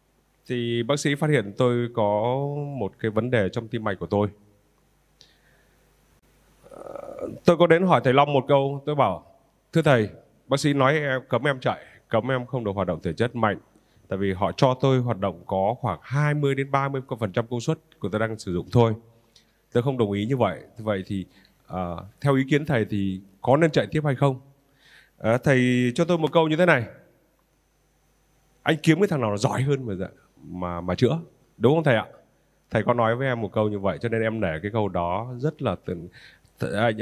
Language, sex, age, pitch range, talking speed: Vietnamese, male, 20-39, 105-140 Hz, 205 wpm